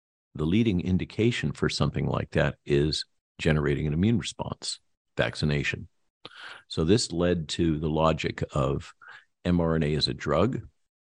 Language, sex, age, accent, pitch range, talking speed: English, male, 50-69, American, 75-90 Hz, 130 wpm